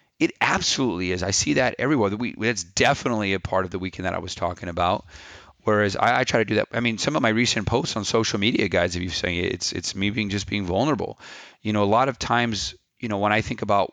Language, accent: English, American